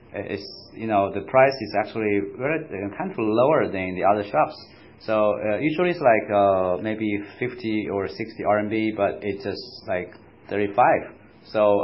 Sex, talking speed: male, 165 wpm